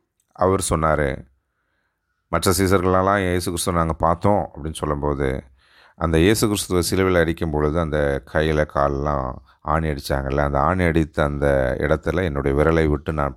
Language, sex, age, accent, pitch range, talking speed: Tamil, male, 30-49, native, 75-95 Hz, 130 wpm